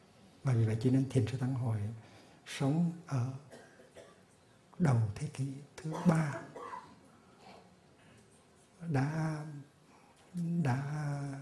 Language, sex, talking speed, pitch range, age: Vietnamese, male, 95 wpm, 125-150 Hz, 60-79